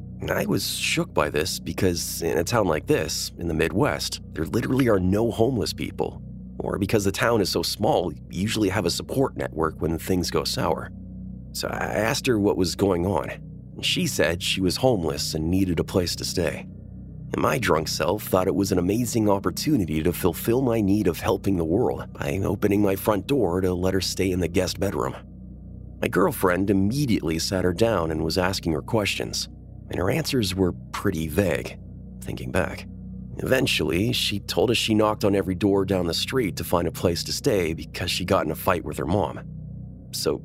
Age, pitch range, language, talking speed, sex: 30-49, 80-105 Hz, English, 200 wpm, male